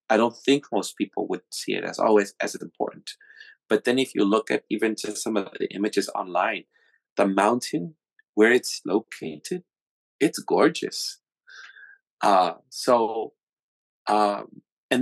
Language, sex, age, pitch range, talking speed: English, male, 30-49, 100-125 Hz, 145 wpm